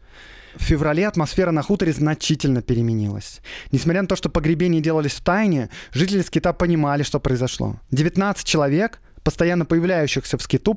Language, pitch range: Russian, 130-170 Hz